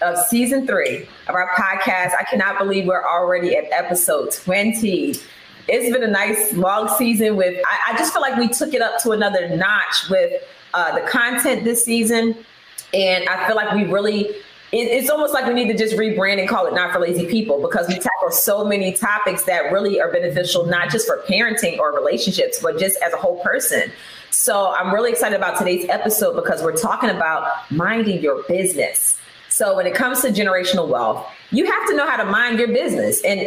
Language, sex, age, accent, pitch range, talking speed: English, female, 20-39, American, 185-245 Hz, 205 wpm